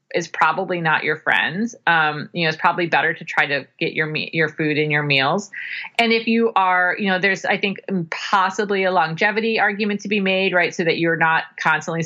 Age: 30-49